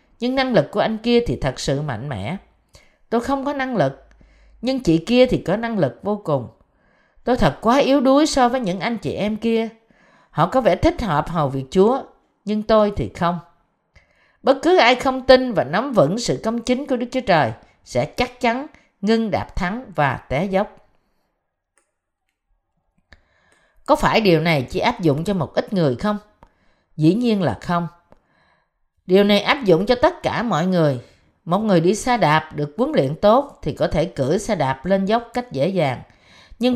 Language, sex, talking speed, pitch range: Vietnamese, female, 195 wpm, 160-245 Hz